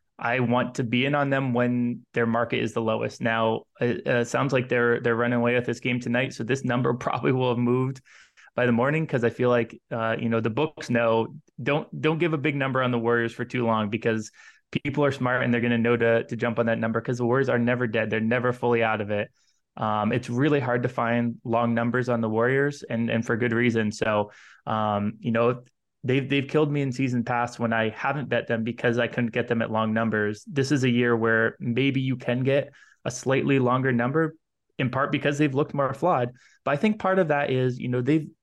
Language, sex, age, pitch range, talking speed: English, male, 20-39, 115-135 Hz, 240 wpm